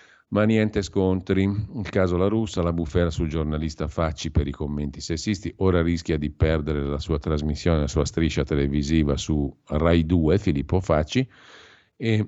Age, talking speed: 50-69, 160 wpm